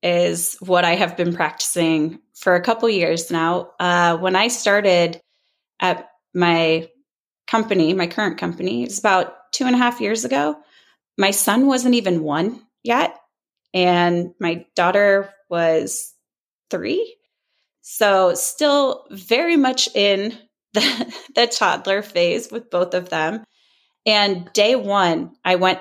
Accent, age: American, 20-39